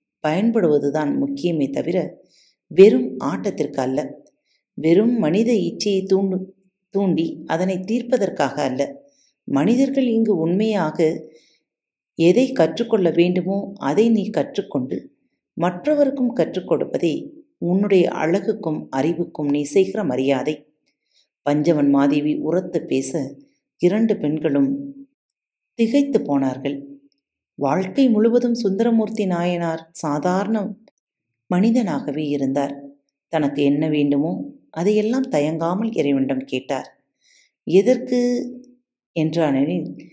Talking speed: 80 wpm